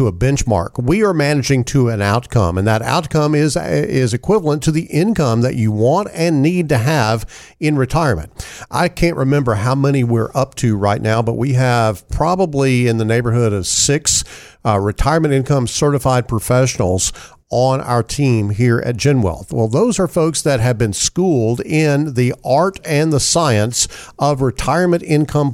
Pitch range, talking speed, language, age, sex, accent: 115-150 Hz, 170 wpm, English, 50-69, male, American